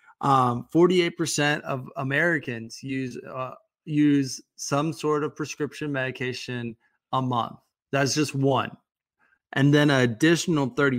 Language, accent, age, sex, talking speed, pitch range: English, American, 20-39, male, 115 wpm, 130-150 Hz